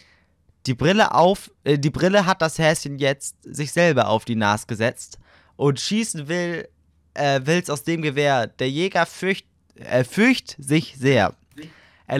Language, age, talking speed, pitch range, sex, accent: German, 20-39, 155 wpm, 125-180 Hz, male, German